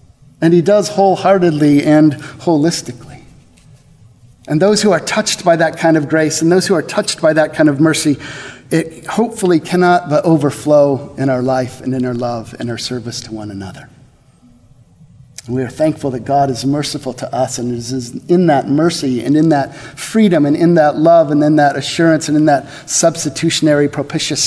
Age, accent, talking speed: 50-69, American, 185 wpm